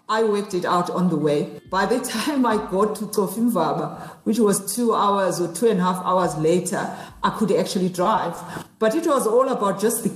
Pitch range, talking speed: 175-225 Hz, 215 wpm